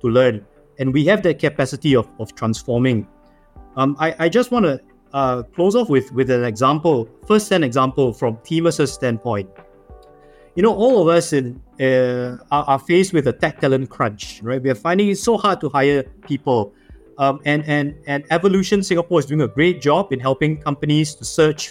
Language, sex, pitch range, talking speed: English, male, 125-165 Hz, 195 wpm